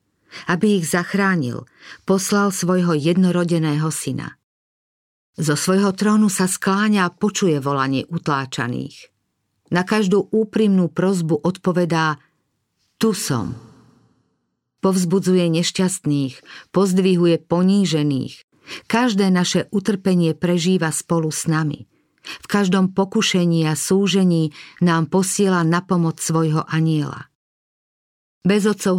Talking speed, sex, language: 95 wpm, female, Slovak